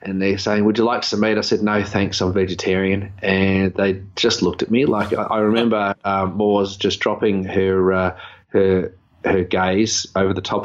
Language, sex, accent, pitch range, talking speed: English, male, Australian, 95-110 Hz, 205 wpm